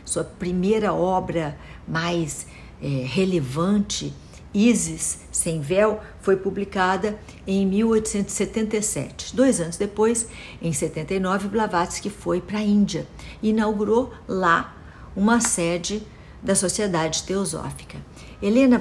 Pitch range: 160-195 Hz